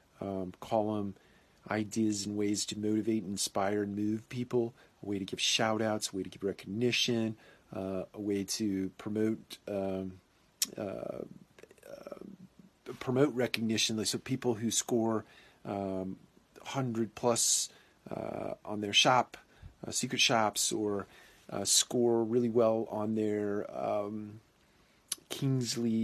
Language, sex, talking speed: English, male, 125 wpm